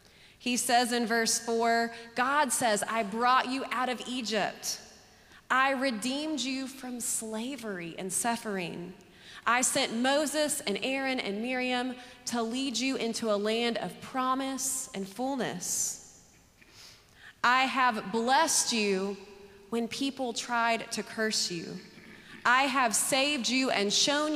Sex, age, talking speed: female, 30-49, 130 wpm